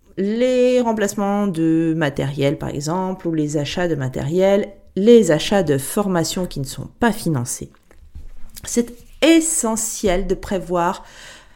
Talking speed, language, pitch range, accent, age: 125 wpm, French, 160-220 Hz, French, 40-59